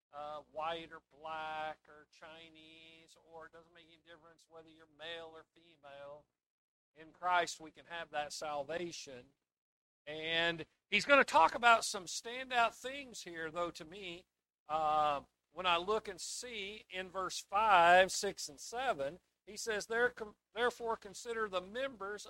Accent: American